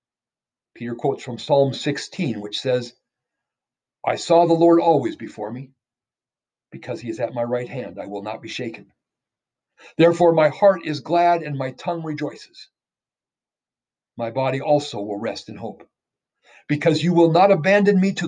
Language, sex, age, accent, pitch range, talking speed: English, male, 50-69, American, 125-170 Hz, 160 wpm